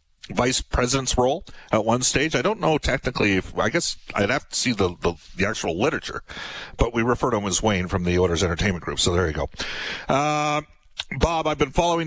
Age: 40-59